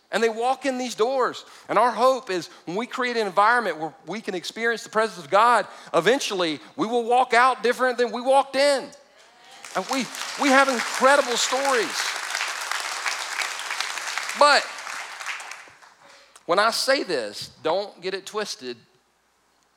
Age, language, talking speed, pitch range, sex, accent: 40-59, English, 145 wpm, 135-225 Hz, male, American